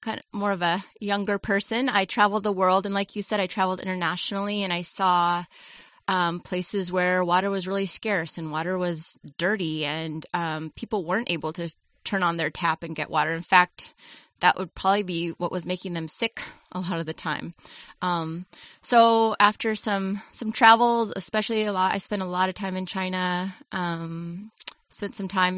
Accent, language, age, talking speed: American, English, 20-39, 190 wpm